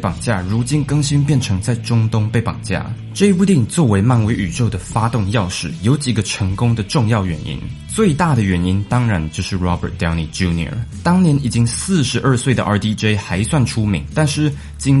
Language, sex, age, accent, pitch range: Chinese, male, 20-39, native, 95-135 Hz